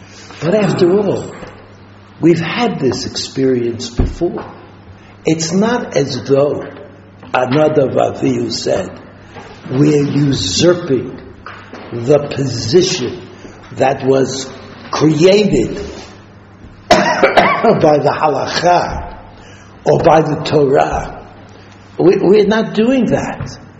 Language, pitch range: English, 100-155 Hz